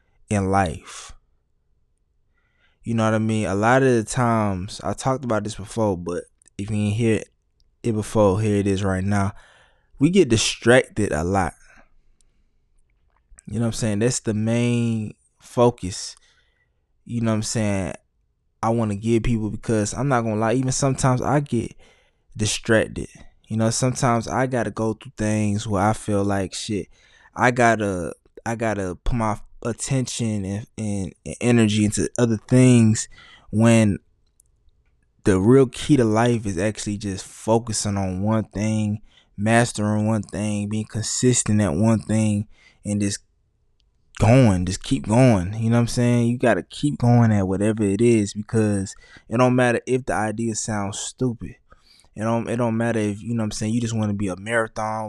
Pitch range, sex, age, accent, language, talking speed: 100-115 Hz, male, 20-39, American, English, 175 wpm